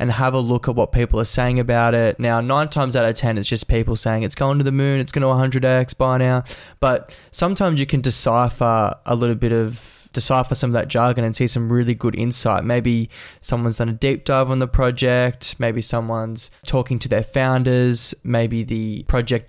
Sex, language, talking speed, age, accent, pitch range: male, English, 215 wpm, 20-39, Australian, 115-130 Hz